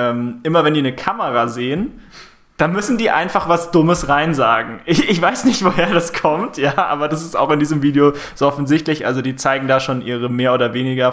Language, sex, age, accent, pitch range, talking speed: German, male, 20-39, German, 125-155 Hz, 210 wpm